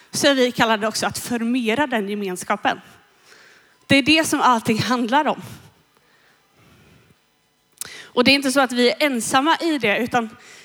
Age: 30-49